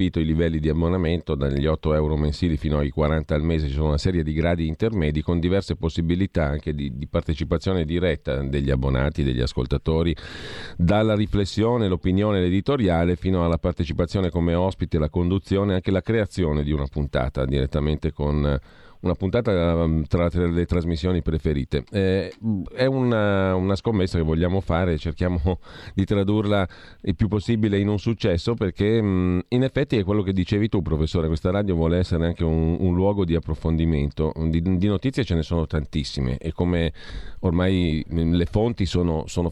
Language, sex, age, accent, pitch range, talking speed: Italian, male, 40-59, native, 80-95 Hz, 165 wpm